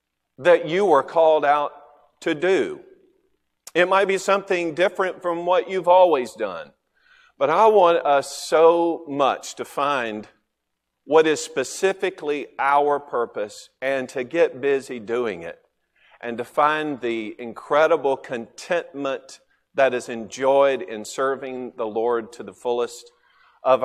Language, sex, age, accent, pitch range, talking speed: English, male, 40-59, American, 120-160 Hz, 135 wpm